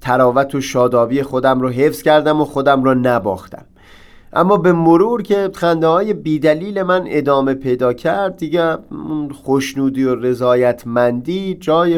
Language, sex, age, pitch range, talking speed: Persian, male, 30-49, 130-170 Hz, 135 wpm